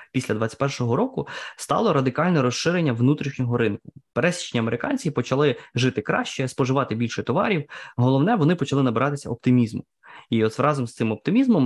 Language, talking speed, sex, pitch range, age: Ukrainian, 140 wpm, male, 115-140 Hz, 20-39